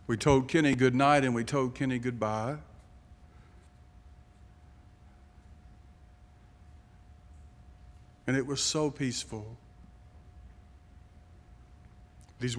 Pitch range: 90-150 Hz